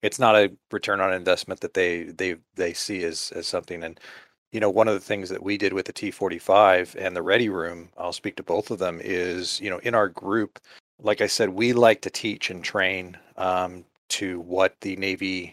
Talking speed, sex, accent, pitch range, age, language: 220 wpm, male, American, 95-110 Hz, 40-59, English